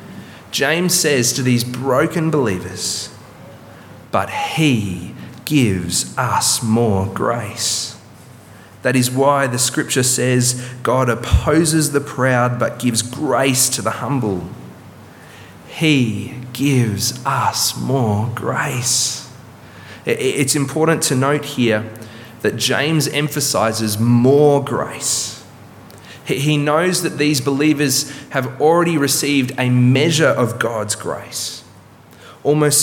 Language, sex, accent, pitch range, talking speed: English, male, Australian, 120-145 Hz, 105 wpm